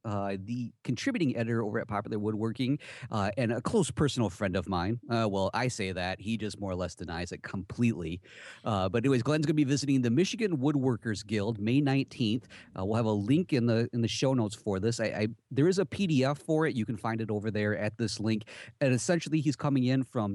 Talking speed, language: 235 wpm, English